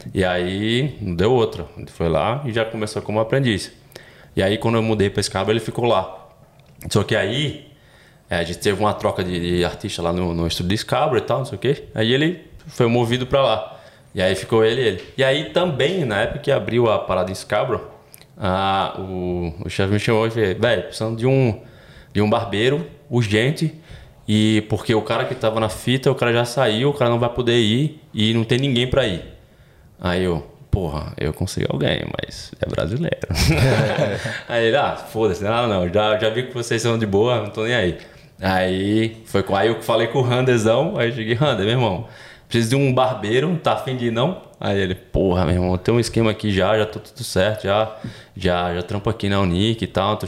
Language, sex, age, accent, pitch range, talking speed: Portuguese, male, 20-39, Brazilian, 95-120 Hz, 210 wpm